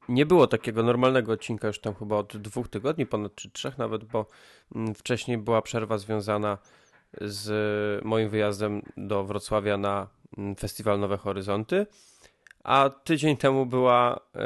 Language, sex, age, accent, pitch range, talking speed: Polish, male, 20-39, native, 105-125 Hz, 135 wpm